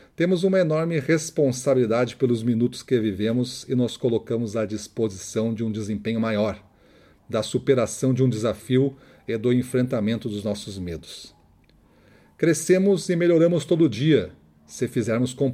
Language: Portuguese